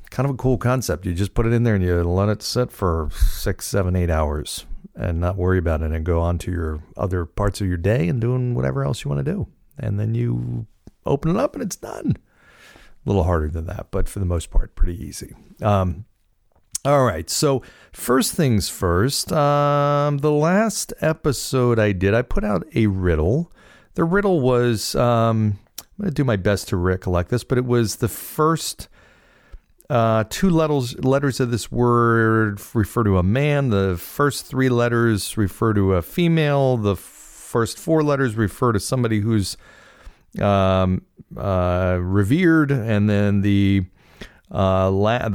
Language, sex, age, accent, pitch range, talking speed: English, male, 50-69, American, 90-125 Hz, 180 wpm